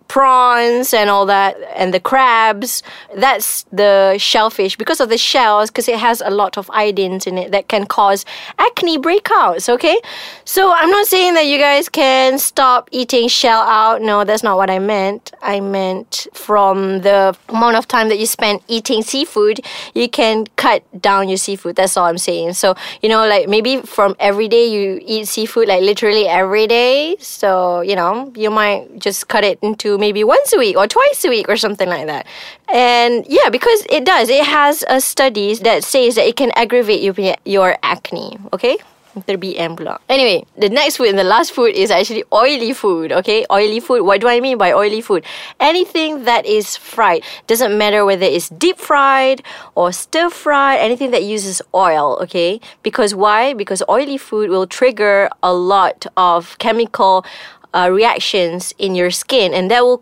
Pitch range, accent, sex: 195-265 Hz, Malaysian, female